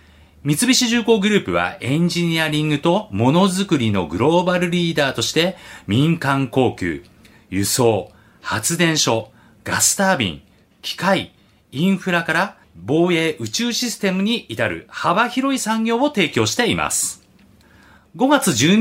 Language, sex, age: Japanese, male, 40-59